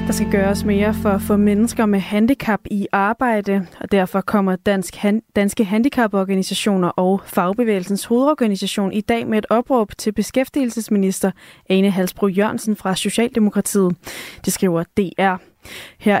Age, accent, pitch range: 20-39, native, 190-220 Hz